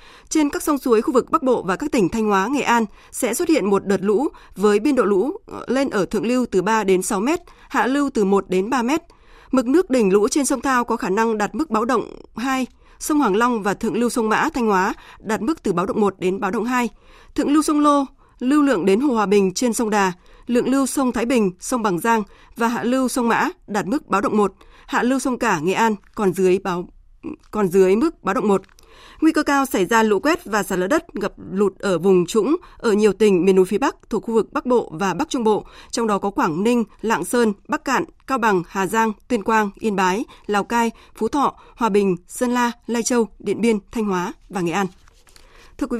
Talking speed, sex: 250 wpm, female